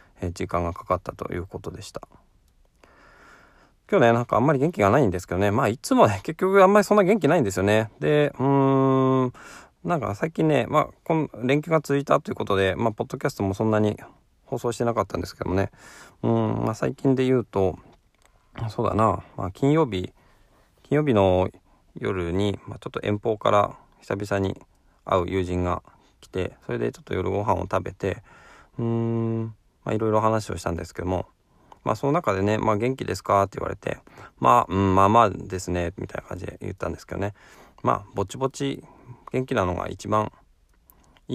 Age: 20-39